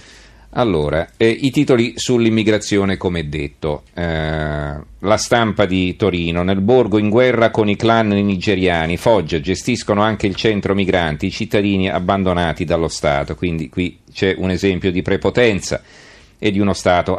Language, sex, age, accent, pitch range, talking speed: Italian, male, 40-59, native, 90-115 Hz, 145 wpm